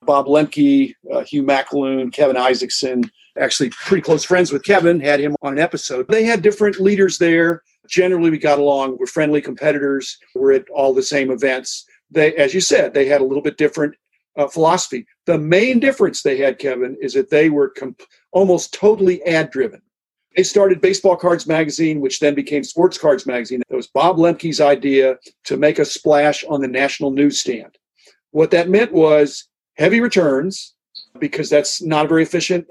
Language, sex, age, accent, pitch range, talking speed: English, male, 50-69, American, 145-190 Hz, 175 wpm